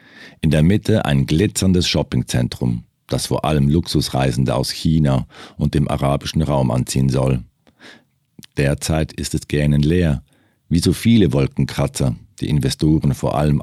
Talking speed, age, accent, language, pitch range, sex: 135 wpm, 50-69, German, German, 70-90 Hz, male